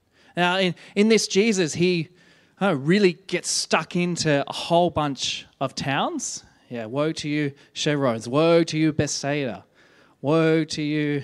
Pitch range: 145-190 Hz